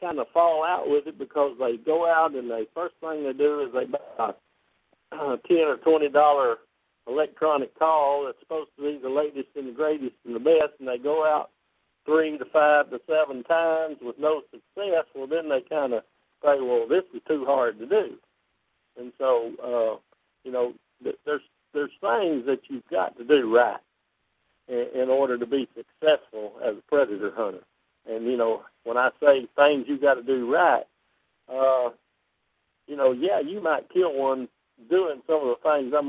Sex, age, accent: male, 60-79, American